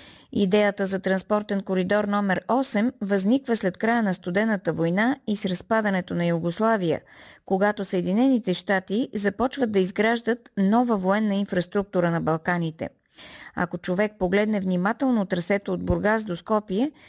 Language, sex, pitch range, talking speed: Bulgarian, female, 185-240 Hz, 130 wpm